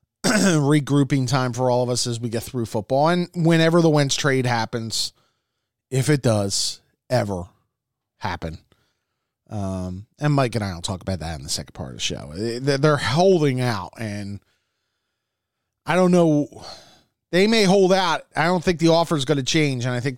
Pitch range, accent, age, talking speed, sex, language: 115-150 Hz, American, 30-49, 180 wpm, male, English